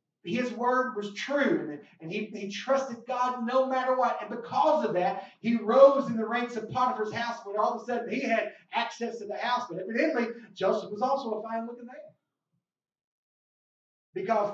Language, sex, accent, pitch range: English, male, American, 215-275 Hz